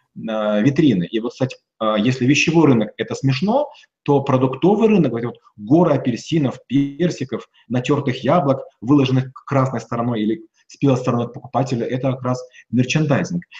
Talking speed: 140 wpm